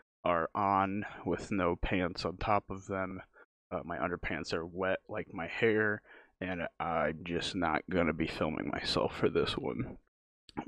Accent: American